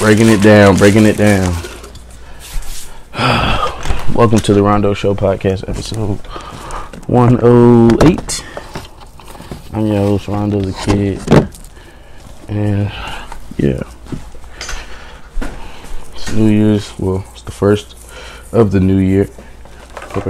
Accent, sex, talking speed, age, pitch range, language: American, male, 100 wpm, 20-39, 85-110 Hz, English